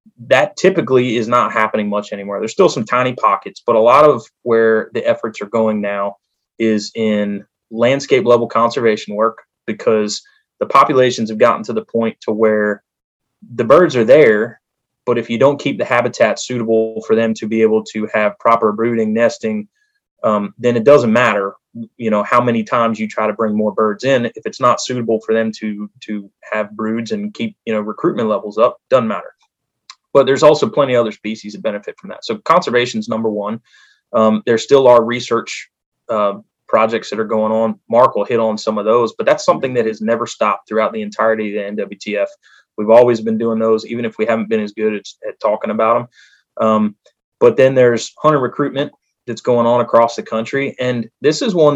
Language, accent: English, American